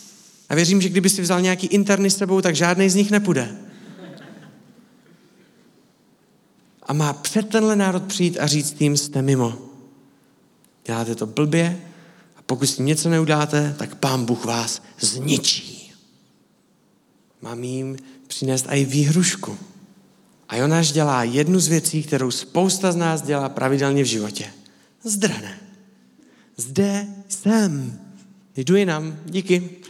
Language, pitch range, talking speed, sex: Czech, 130-190 Hz, 130 wpm, male